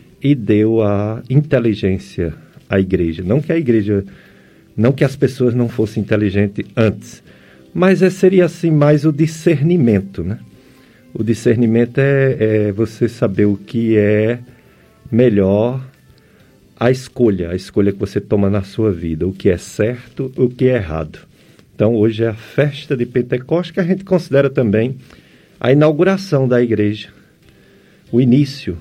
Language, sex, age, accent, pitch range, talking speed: Portuguese, male, 50-69, Brazilian, 105-140 Hz, 150 wpm